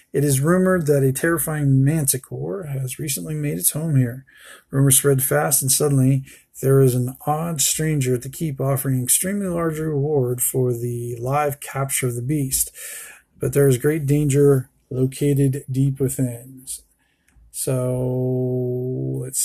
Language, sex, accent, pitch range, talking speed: English, male, American, 130-150 Hz, 145 wpm